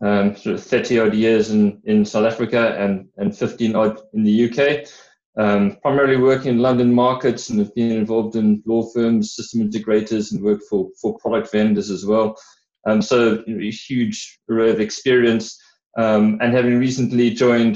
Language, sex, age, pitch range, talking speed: English, male, 20-39, 105-125 Hz, 165 wpm